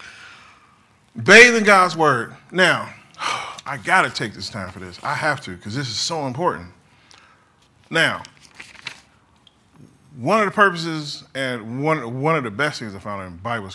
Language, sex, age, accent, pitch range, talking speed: English, male, 30-49, American, 110-140 Hz, 155 wpm